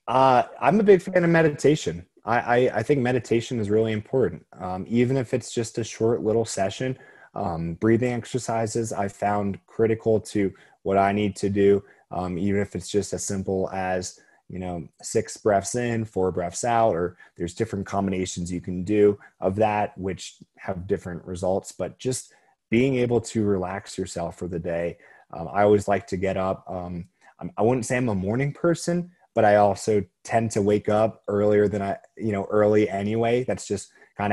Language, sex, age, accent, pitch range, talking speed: English, male, 20-39, American, 95-115 Hz, 185 wpm